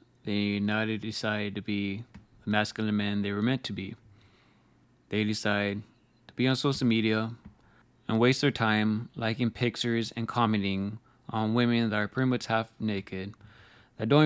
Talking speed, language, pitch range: 160 wpm, English, 105-120 Hz